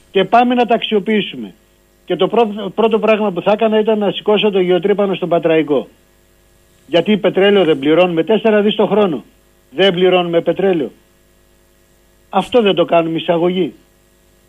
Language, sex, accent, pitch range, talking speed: Greek, male, native, 160-250 Hz, 150 wpm